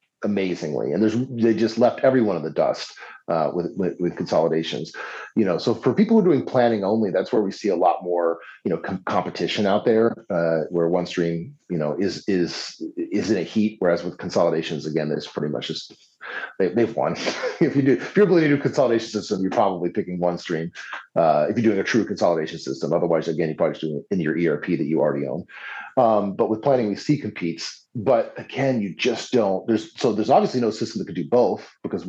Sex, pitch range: male, 85-110 Hz